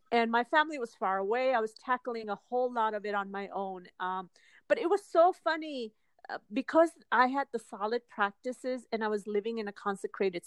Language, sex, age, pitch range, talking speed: English, female, 40-59, 210-265 Hz, 205 wpm